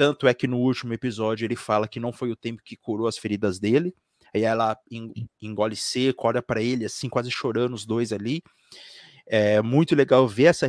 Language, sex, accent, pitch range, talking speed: Portuguese, male, Brazilian, 115-150 Hz, 200 wpm